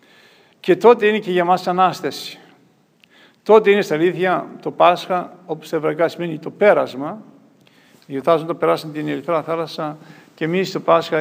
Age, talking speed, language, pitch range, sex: 50-69, 155 wpm, Greek, 165-195 Hz, male